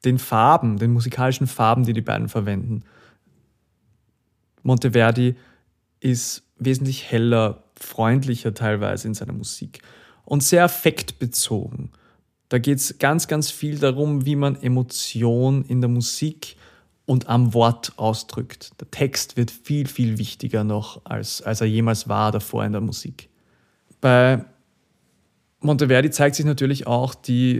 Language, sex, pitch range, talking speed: German, male, 115-135 Hz, 135 wpm